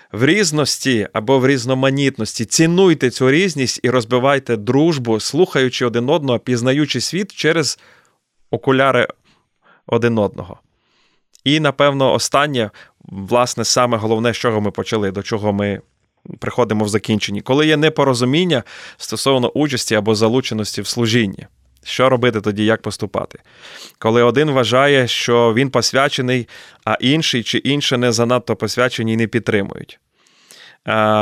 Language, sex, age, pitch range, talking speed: Ukrainian, male, 30-49, 115-145 Hz, 125 wpm